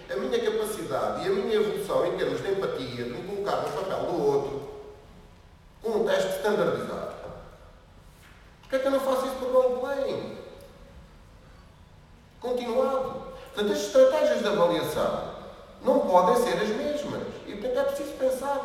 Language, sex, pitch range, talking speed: Portuguese, male, 140-220 Hz, 160 wpm